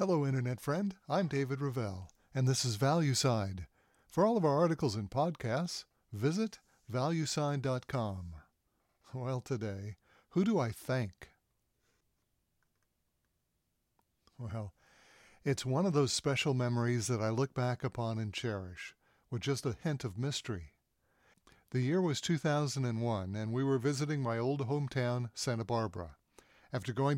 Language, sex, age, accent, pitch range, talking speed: English, male, 60-79, American, 115-145 Hz, 130 wpm